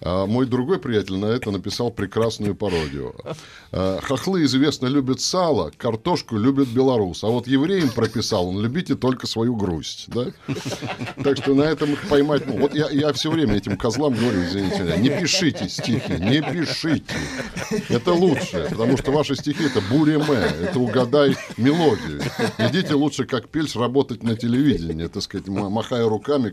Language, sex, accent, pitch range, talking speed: Russian, male, native, 95-135 Hz, 160 wpm